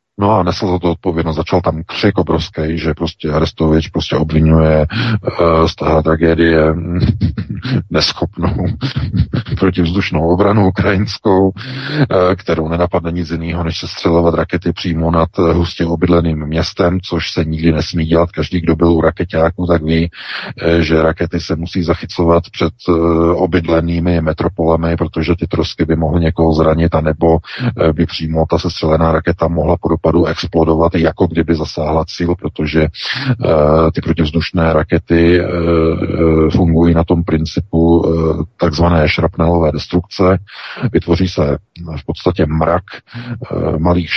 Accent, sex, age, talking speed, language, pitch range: native, male, 40-59, 125 wpm, Czech, 80-90 Hz